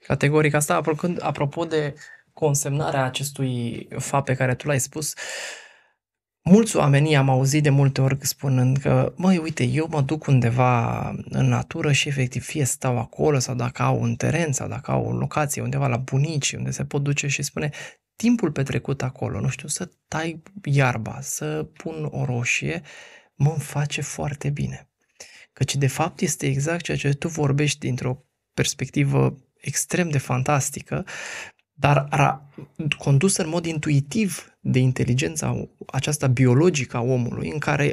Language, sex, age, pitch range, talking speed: Romanian, male, 20-39, 130-155 Hz, 150 wpm